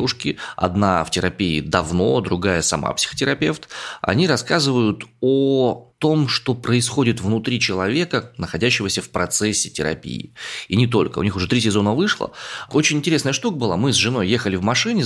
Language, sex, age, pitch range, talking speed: Russian, male, 20-39, 90-120 Hz, 150 wpm